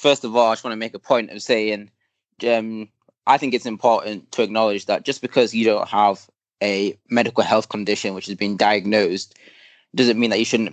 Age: 20-39